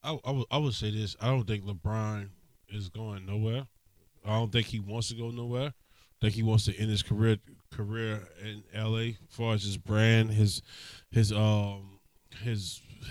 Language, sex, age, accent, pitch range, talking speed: English, male, 20-39, American, 105-125 Hz, 190 wpm